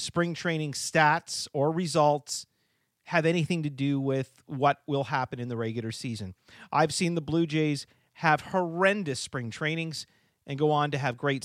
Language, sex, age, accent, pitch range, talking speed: English, male, 40-59, American, 130-180 Hz, 170 wpm